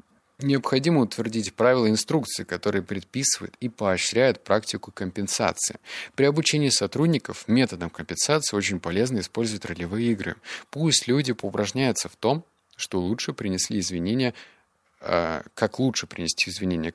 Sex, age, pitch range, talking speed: male, 20-39, 95-125 Hz, 115 wpm